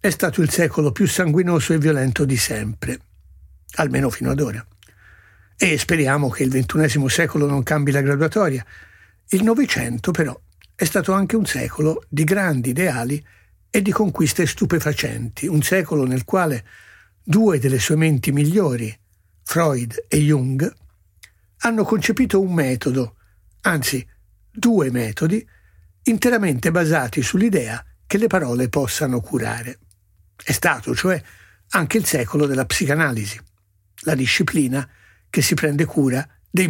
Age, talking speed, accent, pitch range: 60-79, 130 wpm, native, 110-170 Hz